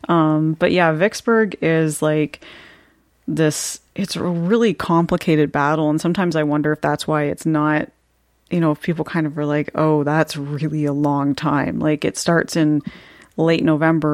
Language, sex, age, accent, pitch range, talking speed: English, female, 30-49, American, 145-160 Hz, 175 wpm